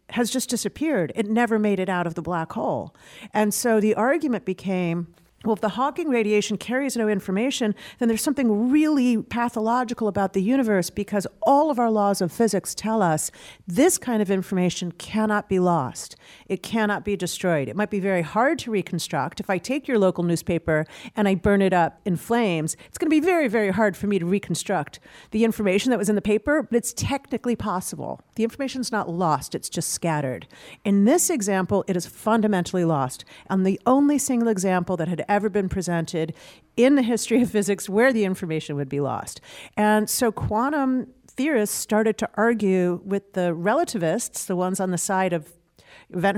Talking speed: 190 wpm